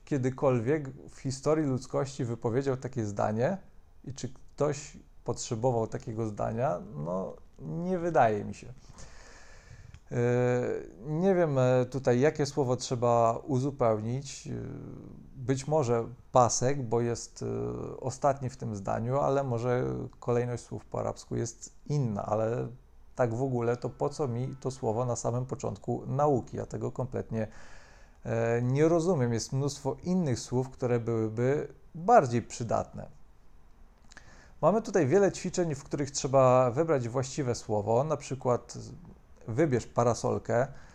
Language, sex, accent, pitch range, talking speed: Polish, male, native, 115-145 Hz, 120 wpm